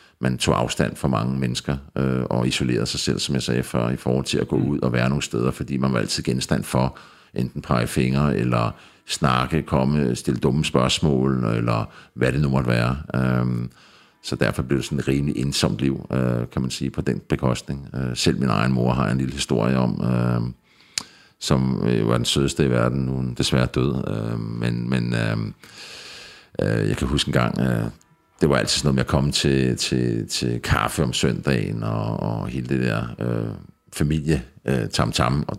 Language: Danish